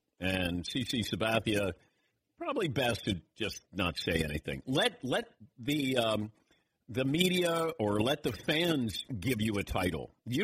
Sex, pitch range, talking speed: male, 115-165 Hz, 145 wpm